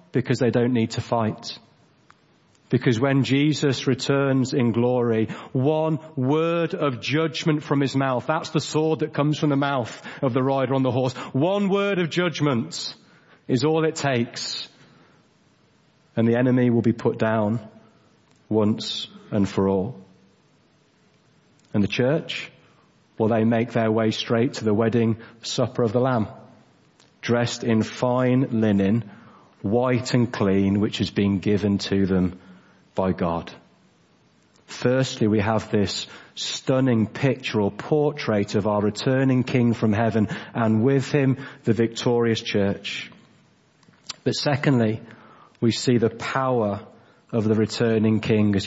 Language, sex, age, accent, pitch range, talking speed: English, male, 40-59, British, 110-135 Hz, 140 wpm